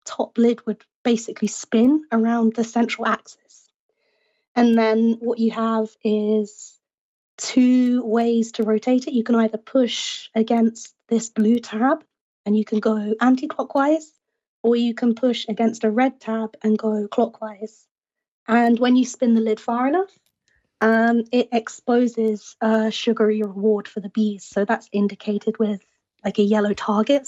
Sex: female